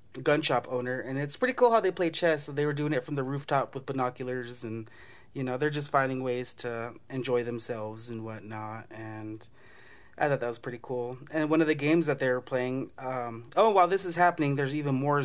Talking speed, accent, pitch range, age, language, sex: 230 wpm, American, 120-145 Hz, 30-49, English, male